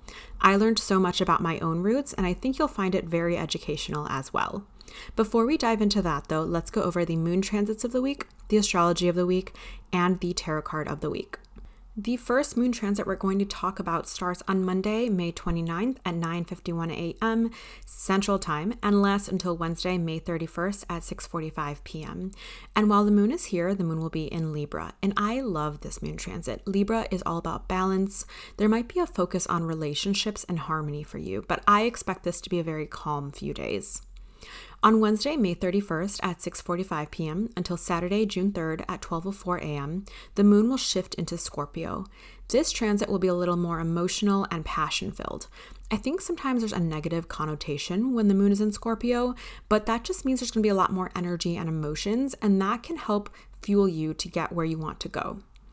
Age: 20-39